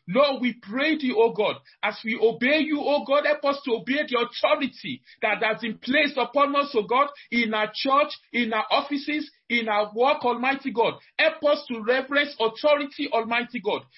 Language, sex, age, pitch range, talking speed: English, male, 50-69, 250-310 Hz, 200 wpm